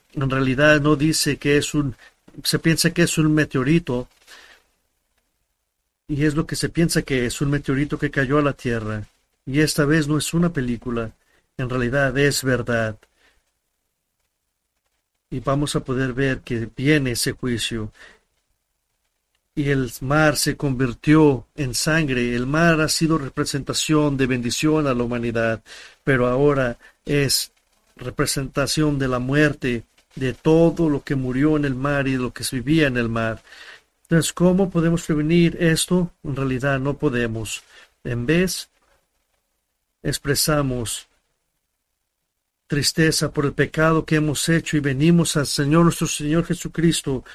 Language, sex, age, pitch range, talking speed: English, male, 50-69, 130-155 Hz, 145 wpm